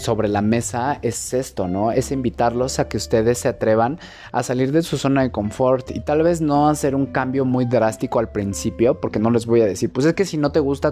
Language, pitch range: Spanish, 110-135 Hz